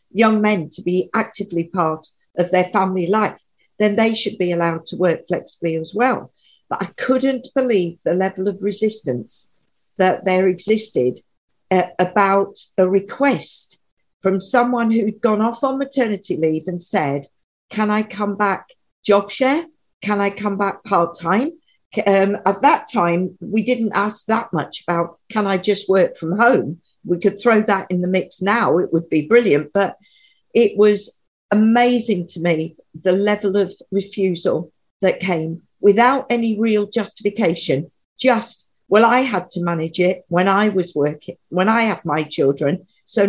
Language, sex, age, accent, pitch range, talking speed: English, female, 50-69, British, 180-225 Hz, 160 wpm